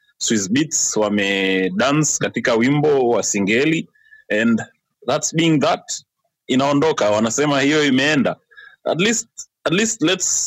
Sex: male